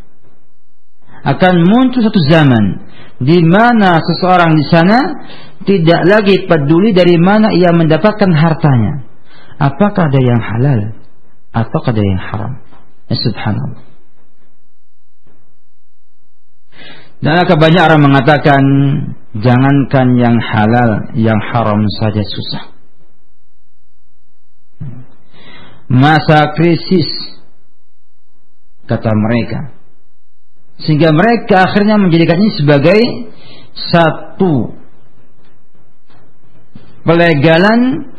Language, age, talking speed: Italian, 50-69, 80 wpm